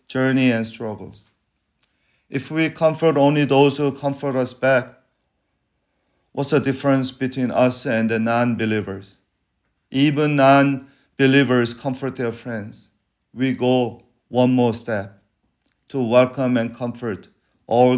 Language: English